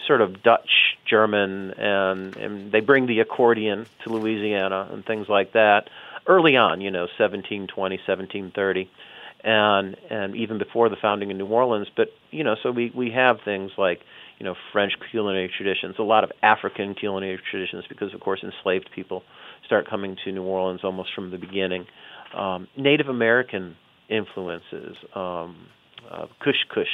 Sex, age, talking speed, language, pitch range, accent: male, 40-59, 155 wpm, English, 95-110 Hz, American